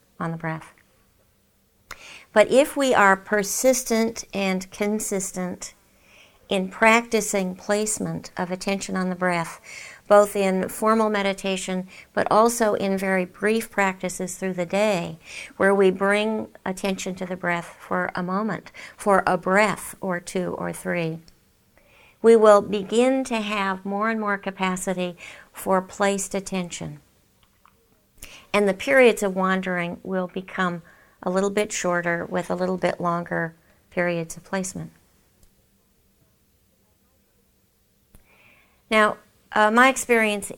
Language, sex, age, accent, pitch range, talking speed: English, female, 50-69, American, 180-215 Hz, 125 wpm